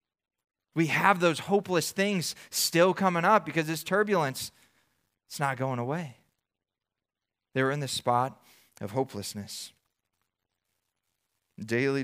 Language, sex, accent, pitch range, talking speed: English, male, American, 110-150 Hz, 115 wpm